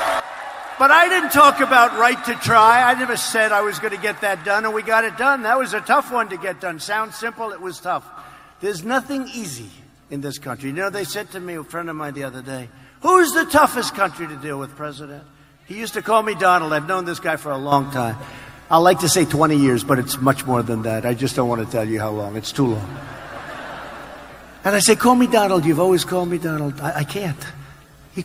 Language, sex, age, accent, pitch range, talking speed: English, male, 50-69, American, 145-215 Hz, 250 wpm